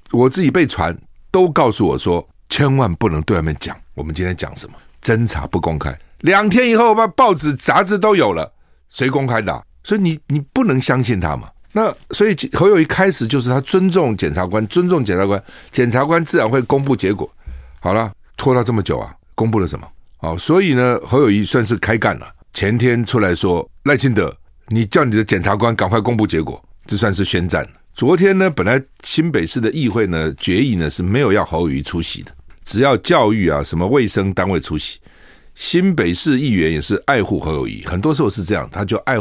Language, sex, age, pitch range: Chinese, male, 50-69, 90-150 Hz